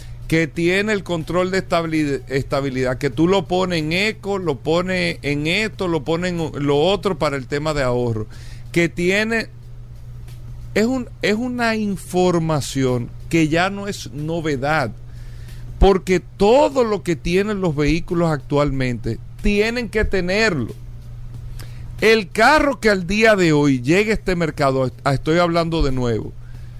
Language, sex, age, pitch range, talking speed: Spanish, male, 50-69, 125-200 Hz, 145 wpm